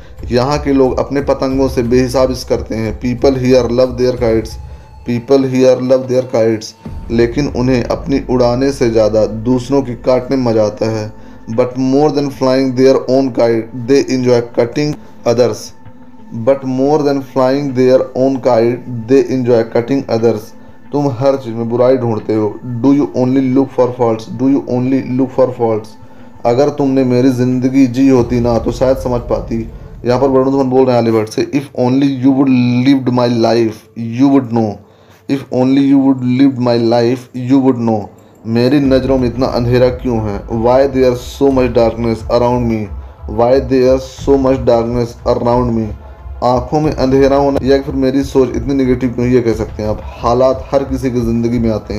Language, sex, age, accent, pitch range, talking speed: Hindi, male, 20-39, native, 115-135 Hz, 185 wpm